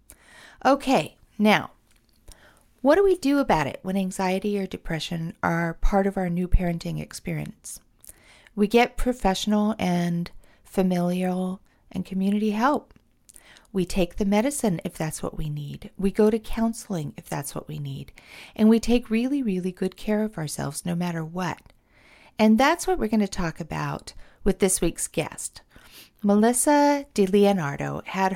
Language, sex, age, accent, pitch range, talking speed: English, female, 40-59, American, 175-235 Hz, 155 wpm